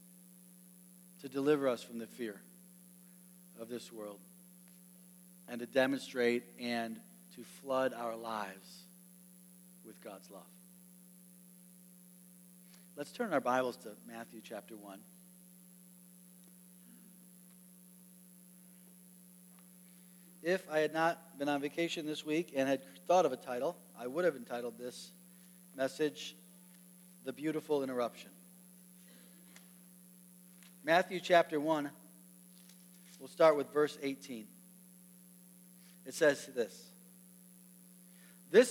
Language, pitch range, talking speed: English, 155-180 Hz, 100 wpm